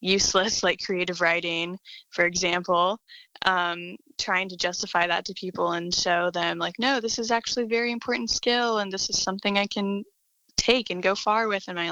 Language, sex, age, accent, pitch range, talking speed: English, female, 10-29, American, 180-210 Hz, 190 wpm